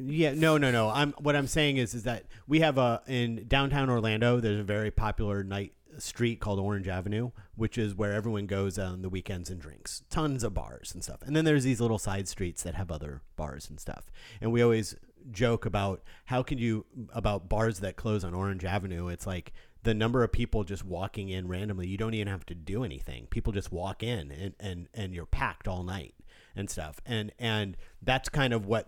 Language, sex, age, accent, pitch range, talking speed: English, male, 40-59, American, 95-120 Hz, 220 wpm